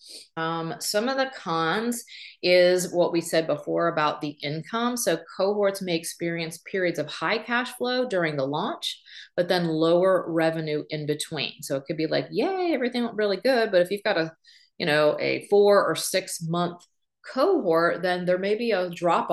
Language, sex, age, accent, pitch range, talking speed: English, female, 30-49, American, 155-205 Hz, 185 wpm